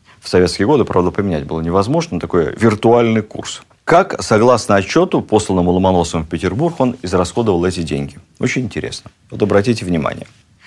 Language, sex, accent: Russian, male, native